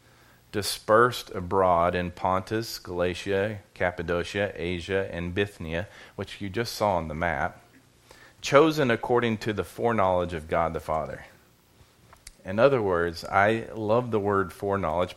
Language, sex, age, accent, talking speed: English, male, 40-59, American, 130 wpm